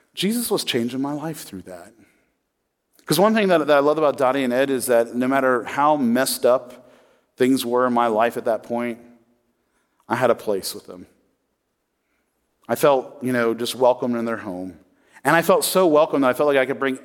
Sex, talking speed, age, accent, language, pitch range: male, 210 wpm, 40-59, American, English, 120-155 Hz